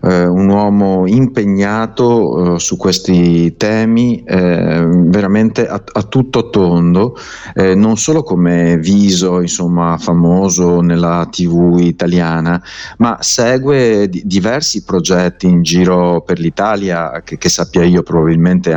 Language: Italian